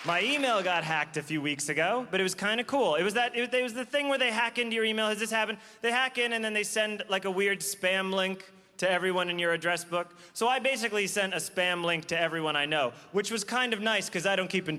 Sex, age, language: male, 30-49, English